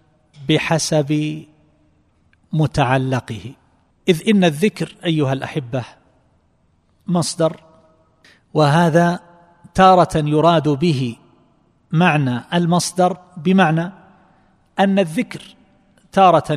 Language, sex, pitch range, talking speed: Arabic, male, 140-175 Hz, 65 wpm